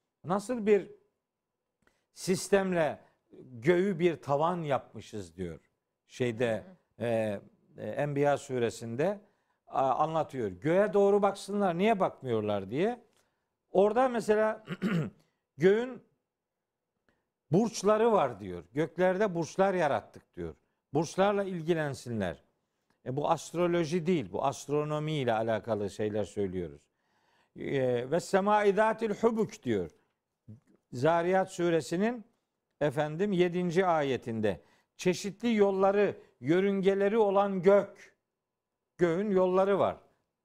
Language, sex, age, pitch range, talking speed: Turkish, male, 60-79, 135-200 Hz, 90 wpm